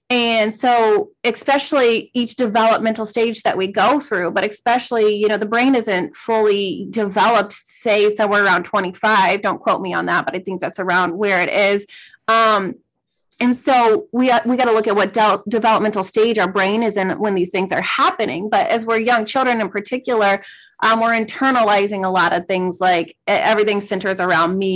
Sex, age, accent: female, 30-49, American